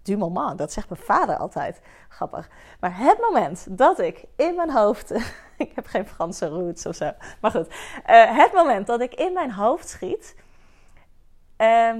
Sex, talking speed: female, 175 wpm